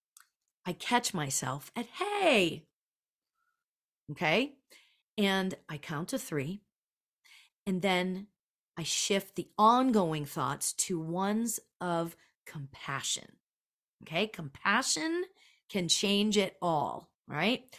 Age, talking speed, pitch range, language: 40-59, 100 wpm, 175-235 Hz, English